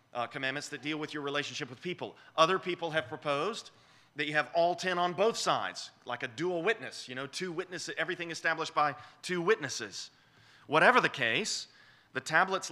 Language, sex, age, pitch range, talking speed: English, male, 30-49, 120-170 Hz, 185 wpm